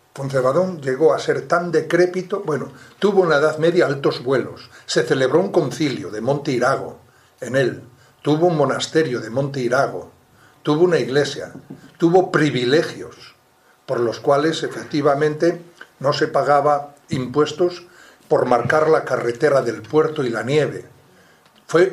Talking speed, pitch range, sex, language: 140 wpm, 135-175 Hz, male, Spanish